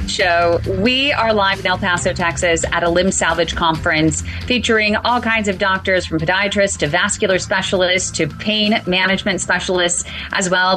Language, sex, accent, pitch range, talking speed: English, female, American, 170-205 Hz, 160 wpm